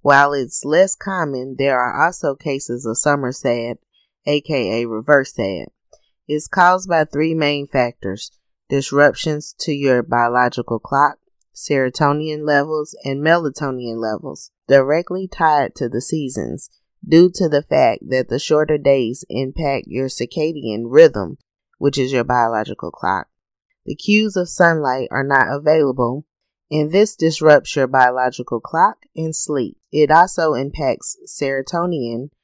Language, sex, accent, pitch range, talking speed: English, female, American, 125-155 Hz, 130 wpm